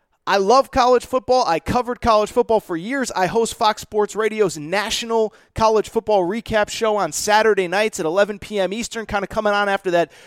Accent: American